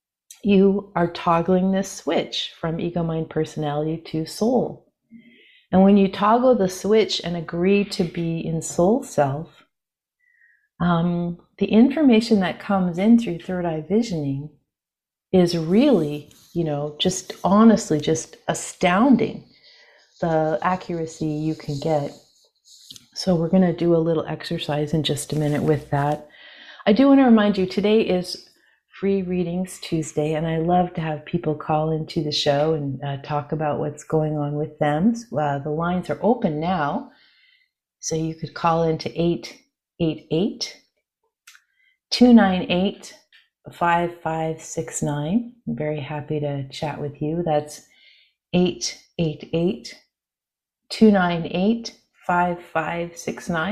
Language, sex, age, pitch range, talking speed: English, female, 40-59, 155-200 Hz, 125 wpm